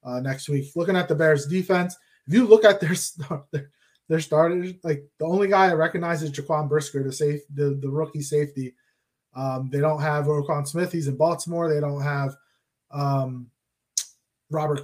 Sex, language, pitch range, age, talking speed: male, English, 145-175 Hz, 20-39, 185 wpm